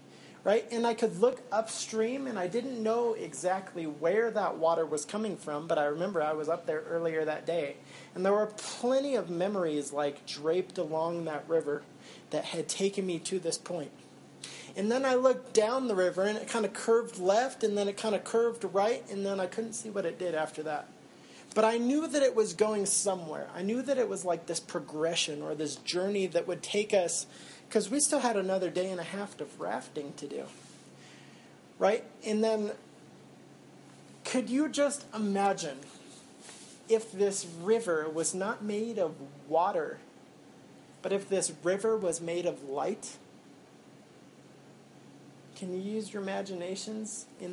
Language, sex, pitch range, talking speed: English, male, 165-220 Hz, 175 wpm